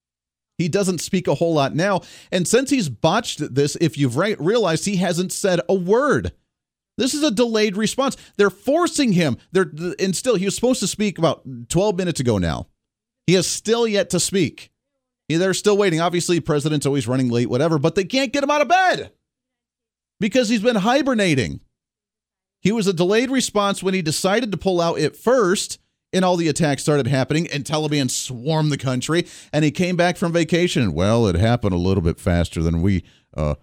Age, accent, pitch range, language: 40-59, American, 130-190 Hz, English